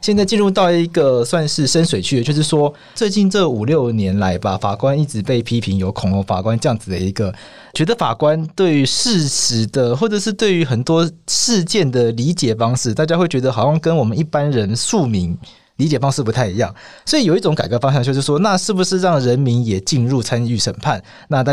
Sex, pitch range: male, 110-155 Hz